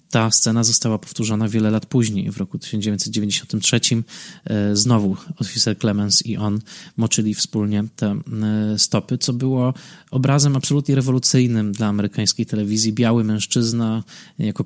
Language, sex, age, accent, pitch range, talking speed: Polish, male, 20-39, native, 110-130 Hz, 125 wpm